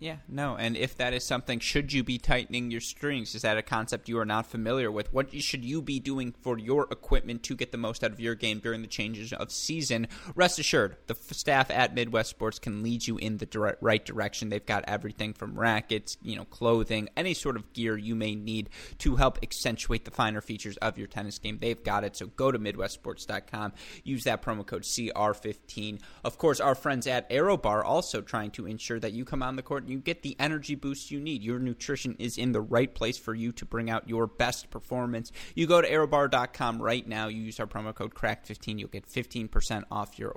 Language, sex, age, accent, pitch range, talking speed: English, male, 20-39, American, 105-125 Hz, 225 wpm